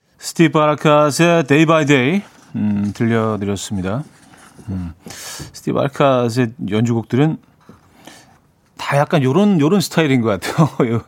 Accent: native